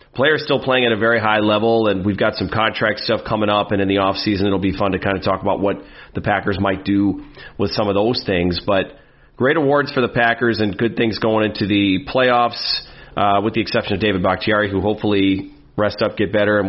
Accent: American